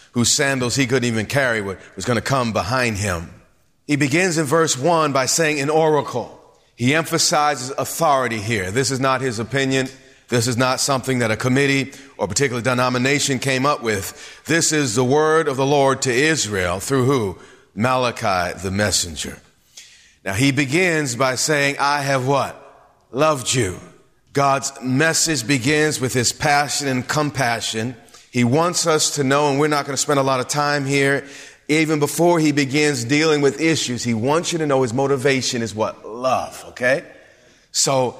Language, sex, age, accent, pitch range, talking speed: English, male, 40-59, American, 120-145 Hz, 175 wpm